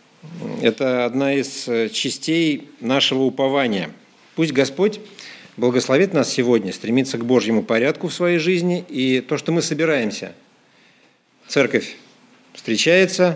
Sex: male